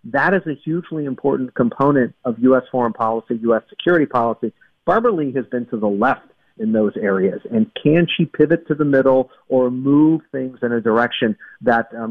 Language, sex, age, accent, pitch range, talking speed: English, male, 50-69, American, 115-145 Hz, 190 wpm